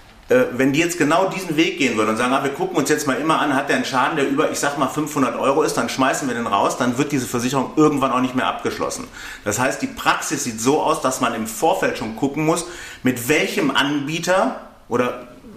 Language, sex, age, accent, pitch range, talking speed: German, male, 30-49, German, 130-165 Hz, 240 wpm